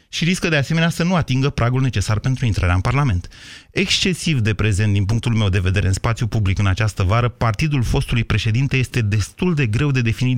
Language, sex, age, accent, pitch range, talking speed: Romanian, male, 30-49, native, 115-145 Hz, 210 wpm